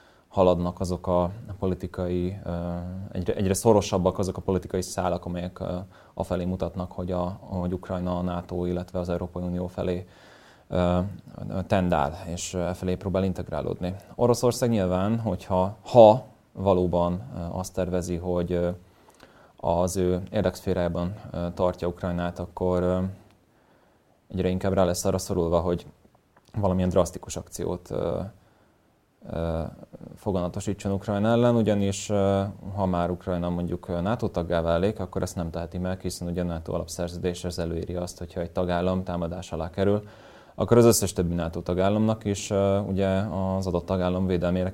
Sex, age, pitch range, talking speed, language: male, 20-39, 85-95 Hz, 125 wpm, Hungarian